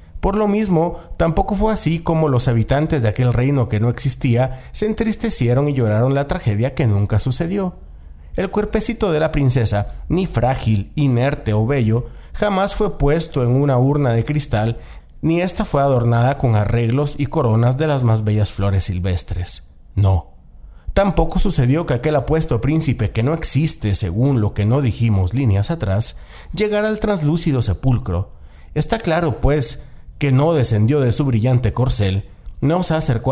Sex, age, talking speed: male, 40-59, 160 wpm